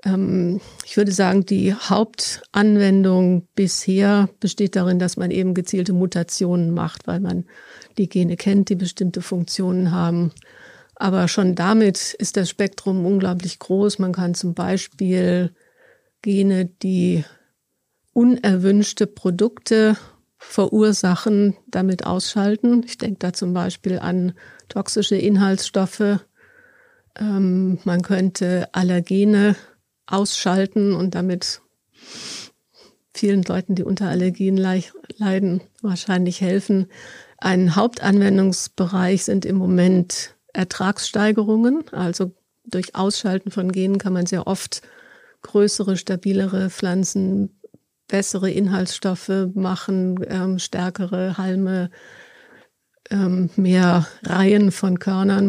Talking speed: 100 wpm